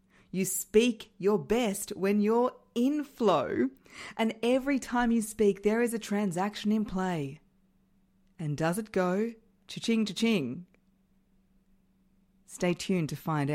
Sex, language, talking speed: female, English, 130 wpm